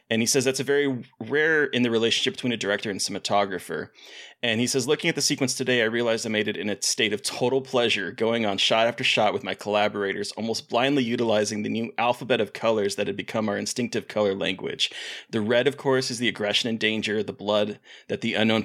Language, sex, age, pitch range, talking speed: English, male, 30-49, 105-130 Hz, 230 wpm